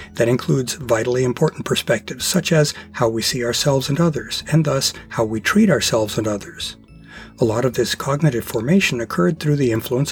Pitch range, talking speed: 115-155 Hz, 185 wpm